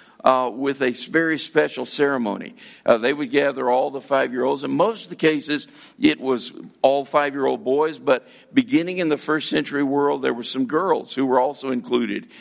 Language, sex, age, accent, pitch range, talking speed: English, male, 50-69, American, 130-185 Hz, 185 wpm